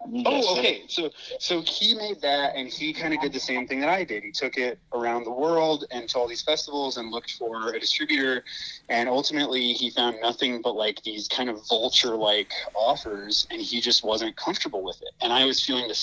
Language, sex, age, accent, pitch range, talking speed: English, male, 30-49, American, 115-145 Hz, 215 wpm